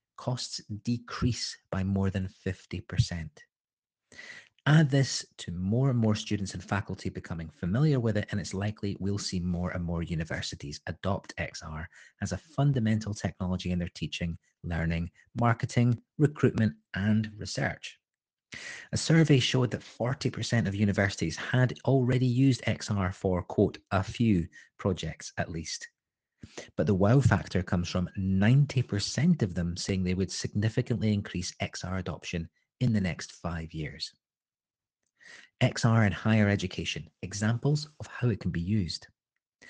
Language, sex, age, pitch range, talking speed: English, male, 30-49, 90-120 Hz, 140 wpm